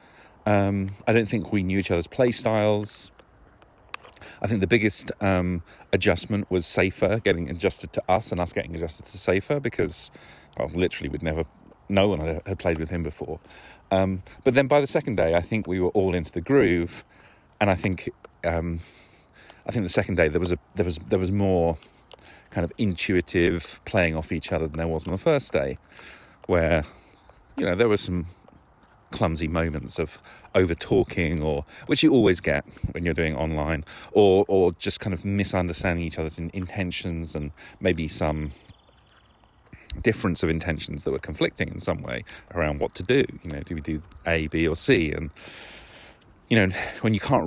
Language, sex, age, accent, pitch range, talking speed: English, male, 40-59, British, 80-100 Hz, 185 wpm